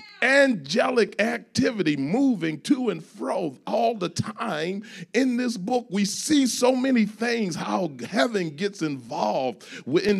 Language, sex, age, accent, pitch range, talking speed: English, male, 40-59, American, 145-220 Hz, 130 wpm